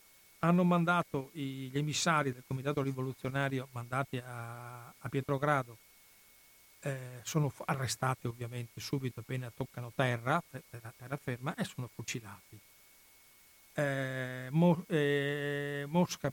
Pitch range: 125-170 Hz